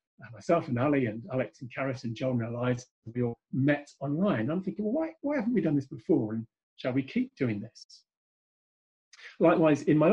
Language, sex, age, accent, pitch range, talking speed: English, male, 40-59, British, 130-165 Hz, 195 wpm